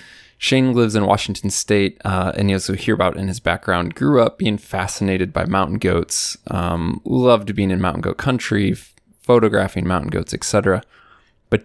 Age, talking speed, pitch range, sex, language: 20-39, 170 wpm, 95-115 Hz, male, English